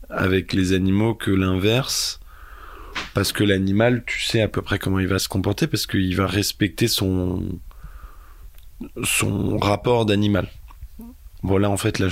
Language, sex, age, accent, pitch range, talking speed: French, male, 20-39, French, 95-105 Hz, 155 wpm